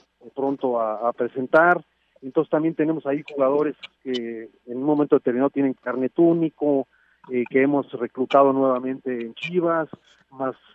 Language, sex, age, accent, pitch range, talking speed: Spanish, male, 40-59, Mexican, 130-170 Hz, 140 wpm